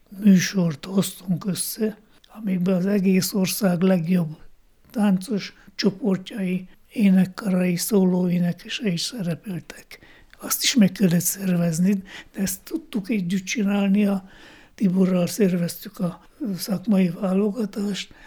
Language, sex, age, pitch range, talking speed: Hungarian, male, 60-79, 185-210 Hz, 100 wpm